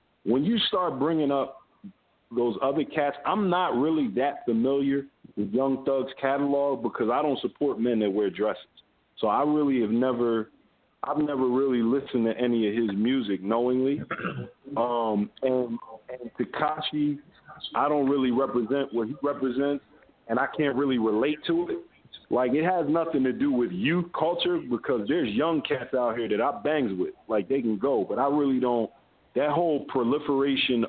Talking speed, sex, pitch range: 170 wpm, male, 115-145 Hz